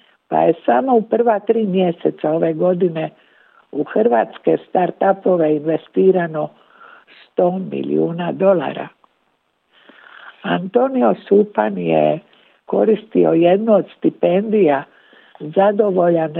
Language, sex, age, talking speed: Croatian, female, 60-79, 90 wpm